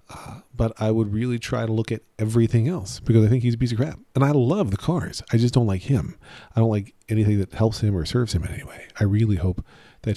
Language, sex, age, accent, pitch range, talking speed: English, male, 40-59, American, 95-130 Hz, 270 wpm